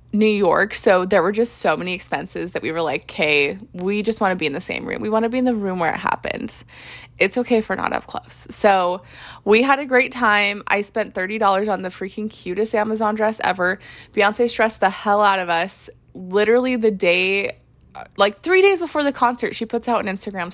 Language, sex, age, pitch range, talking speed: English, female, 20-39, 195-240 Hz, 225 wpm